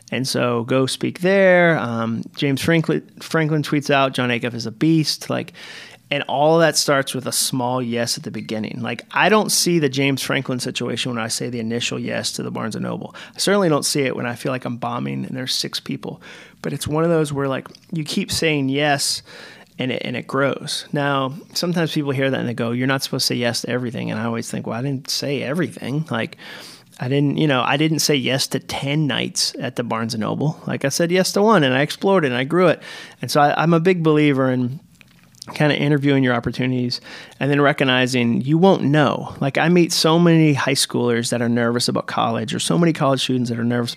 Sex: male